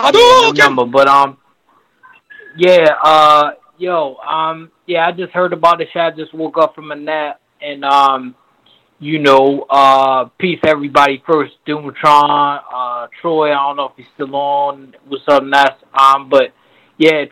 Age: 20-39